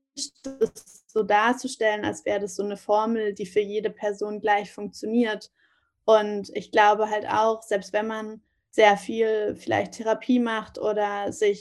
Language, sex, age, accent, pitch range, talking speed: German, female, 20-39, German, 205-240 Hz, 150 wpm